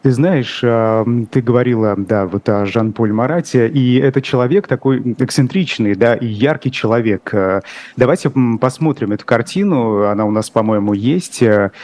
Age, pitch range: 30-49, 110-130 Hz